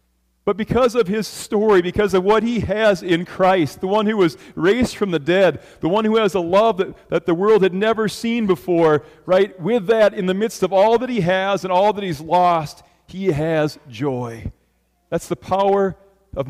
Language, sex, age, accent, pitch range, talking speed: English, male, 40-59, American, 145-190 Hz, 205 wpm